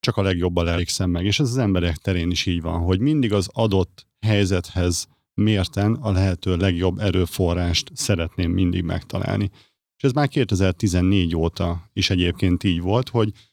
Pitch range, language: 90-105 Hz, Hungarian